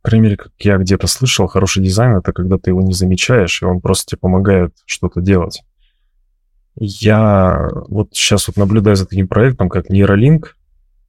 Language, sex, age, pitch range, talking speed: Russian, male, 20-39, 95-110 Hz, 170 wpm